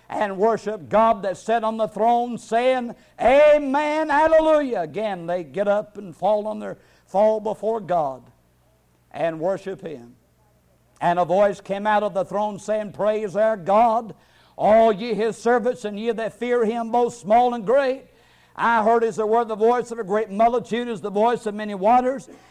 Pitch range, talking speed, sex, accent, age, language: 155-225 Hz, 180 wpm, male, American, 60-79, English